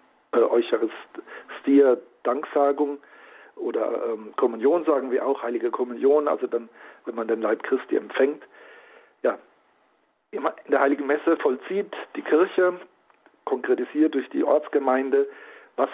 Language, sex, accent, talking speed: German, male, German, 115 wpm